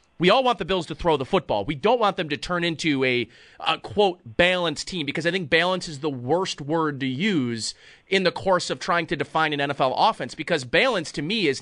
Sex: male